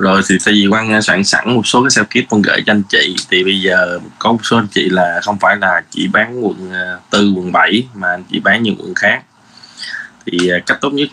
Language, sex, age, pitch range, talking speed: Vietnamese, male, 20-39, 95-105 Hz, 250 wpm